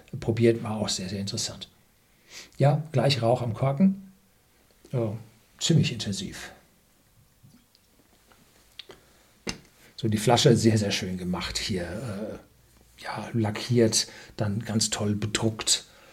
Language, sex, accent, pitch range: German, male, German, 110-140 Hz